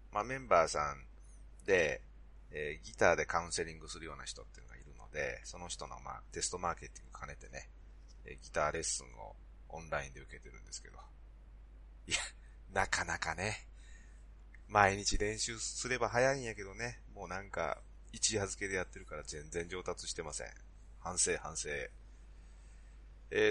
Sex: male